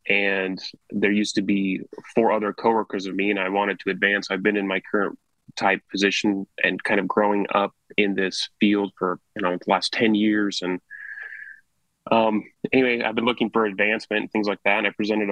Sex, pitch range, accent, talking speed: male, 100-115 Hz, American, 205 wpm